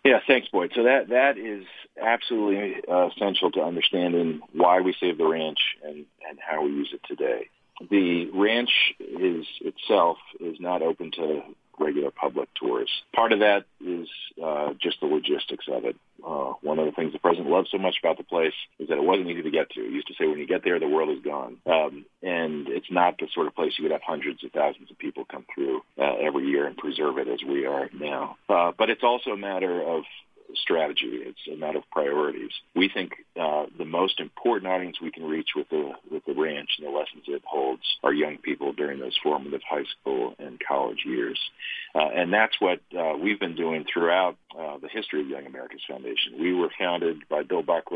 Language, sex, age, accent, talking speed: English, male, 40-59, American, 215 wpm